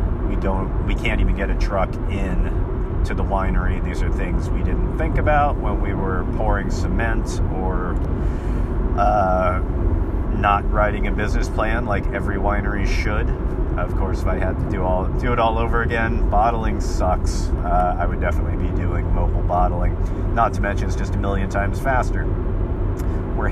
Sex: male